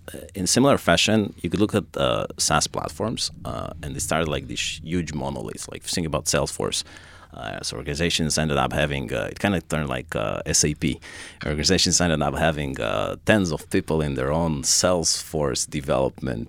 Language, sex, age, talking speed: English, male, 30-49, 180 wpm